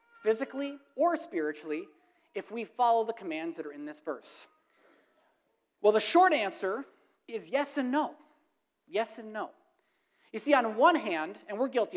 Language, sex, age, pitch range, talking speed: English, male, 30-49, 220-315 Hz, 160 wpm